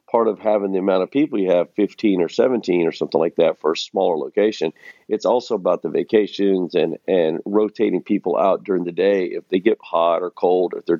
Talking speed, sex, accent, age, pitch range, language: 230 wpm, male, American, 50-69, 95-130 Hz, English